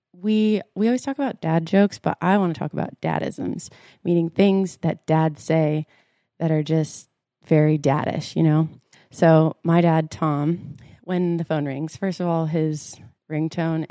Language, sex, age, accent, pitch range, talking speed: English, female, 20-39, American, 155-190 Hz, 170 wpm